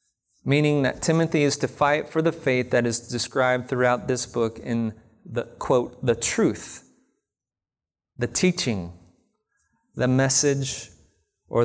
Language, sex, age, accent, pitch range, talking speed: English, male, 30-49, American, 105-130 Hz, 130 wpm